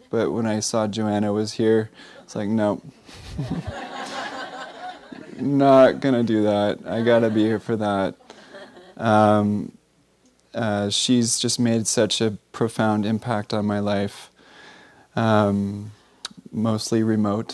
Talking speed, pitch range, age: 125 wpm, 100-110 Hz, 20-39